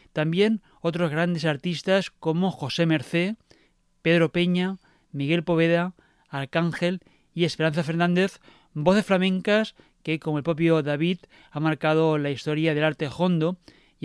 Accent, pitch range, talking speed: Spanish, 155-180 Hz, 130 wpm